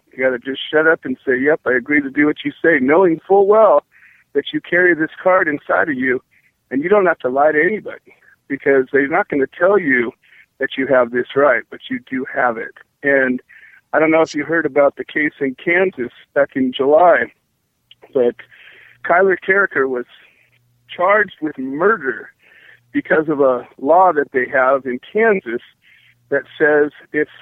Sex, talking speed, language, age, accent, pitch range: male, 190 wpm, English, 50-69, American, 140-185 Hz